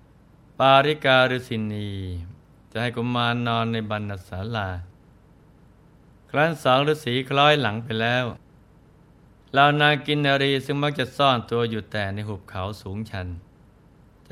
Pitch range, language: 110-135 Hz, Thai